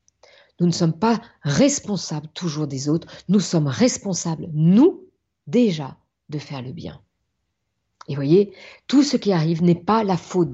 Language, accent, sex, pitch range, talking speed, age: French, French, female, 150-210 Hz, 160 wpm, 50-69